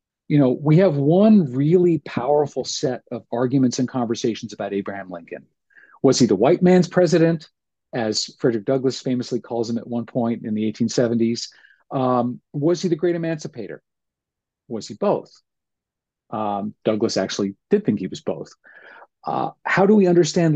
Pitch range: 120-160 Hz